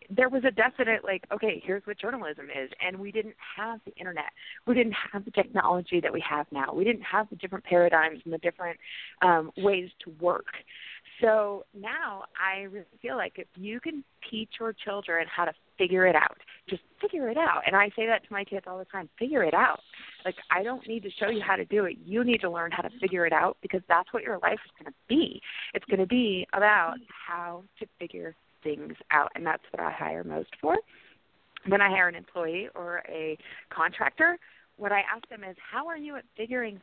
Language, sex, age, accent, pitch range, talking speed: English, female, 30-49, American, 180-230 Hz, 225 wpm